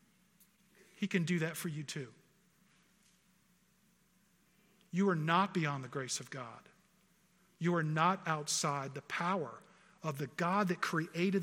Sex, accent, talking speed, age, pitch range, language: male, American, 135 wpm, 50-69, 165-195 Hz, English